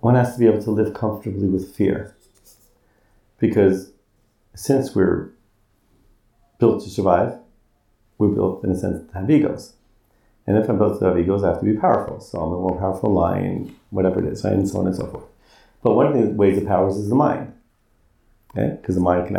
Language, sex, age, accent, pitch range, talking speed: English, male, 40-59, American, 95-115 Hz, 205 wpm